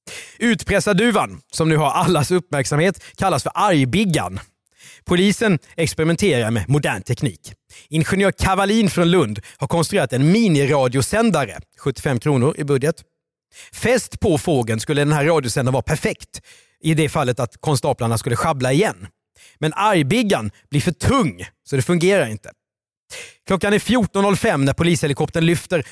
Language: Swedish